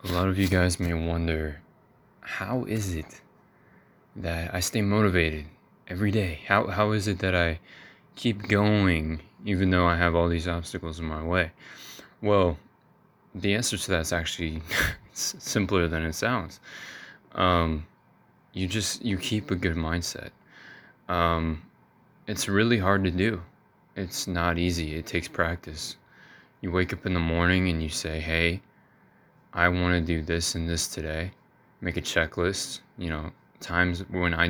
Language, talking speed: English, 160 wpm